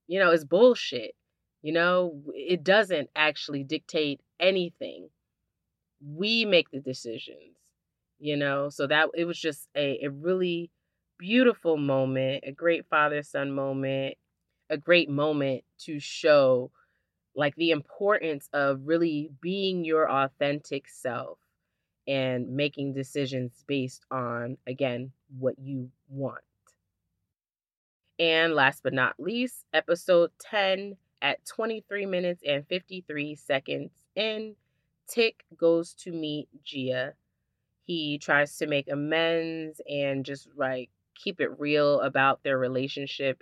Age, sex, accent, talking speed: 30-49, female, American, 120 wpm